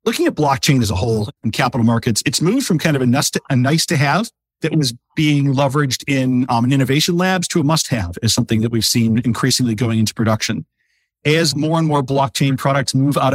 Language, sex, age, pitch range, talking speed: English, male, 40-59, 115-150 Hz, 200 wpm